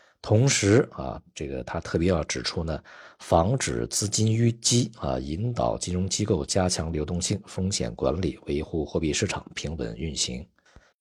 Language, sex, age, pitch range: Chinese, male, 50-69, 75-100 Hz